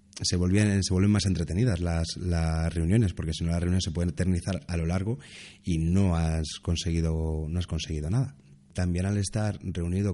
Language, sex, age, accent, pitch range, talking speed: Spanish, male, 30-49, Spanish, 85-100 Hz, 185 wpm